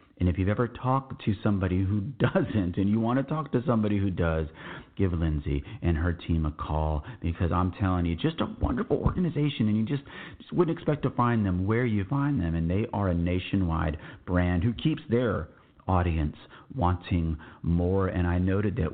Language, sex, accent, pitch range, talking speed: English, male, American, 85-110 Hz, 195 wpm